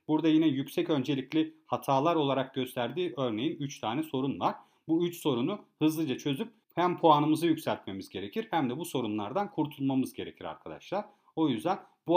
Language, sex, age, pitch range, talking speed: Turkish, male, 40-59, 130-170 Hz, 155 wpm